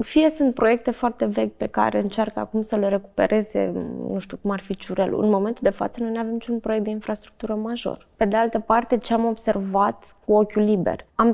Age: 20-39